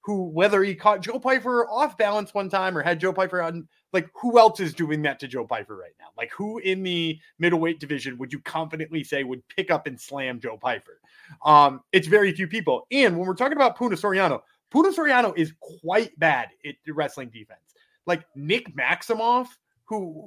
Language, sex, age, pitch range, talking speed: English, male, 20-39, 150-210 Hz, 200 wpm